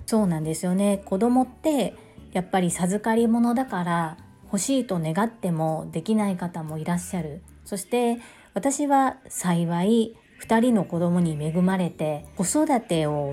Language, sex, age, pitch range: Japanese, female, 40-59, 170-235 Hz